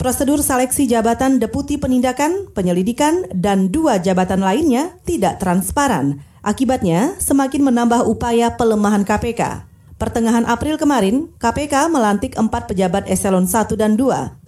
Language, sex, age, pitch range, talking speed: Indonesian, female, 30-49, 195-270 Hz, 120 wpm